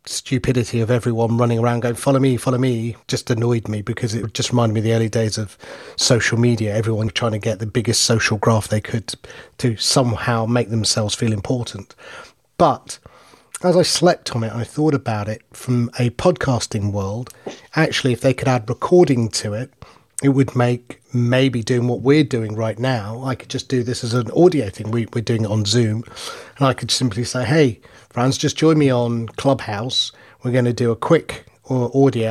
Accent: British